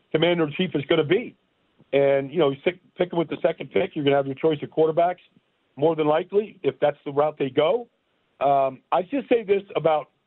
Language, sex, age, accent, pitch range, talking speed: English, male, 50-69, American, 155-205 Hz, 215 wpm